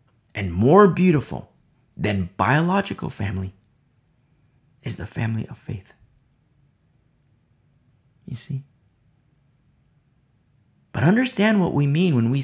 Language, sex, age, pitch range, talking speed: English, male, 40-59, 120-150 Hz, 95 wpm